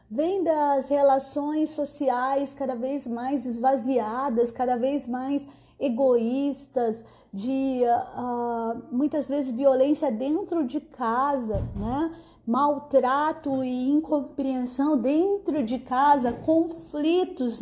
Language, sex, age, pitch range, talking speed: Portuguese, female, 30-49, 240-310 Hz, 90 wpm